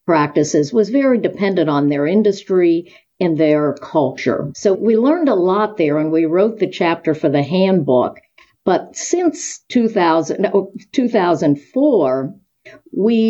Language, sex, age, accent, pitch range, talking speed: English, female, 50-69, American, 150-200 Hz, 125 wpm